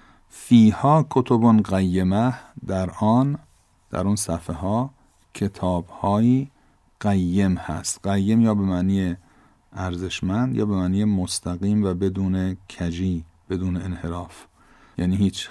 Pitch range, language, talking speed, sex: 90-110 Hz, Persian, 110 wpm, male